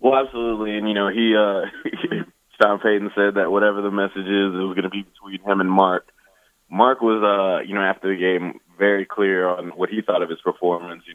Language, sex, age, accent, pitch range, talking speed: English, male, 20-39, American, 95-110 Hz, 225 wpm